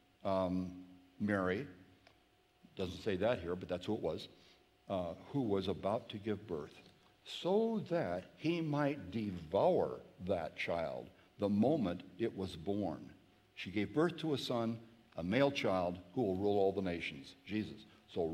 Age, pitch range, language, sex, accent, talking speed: 60-79, 90-120 Hz, English, male, American, 155 wpm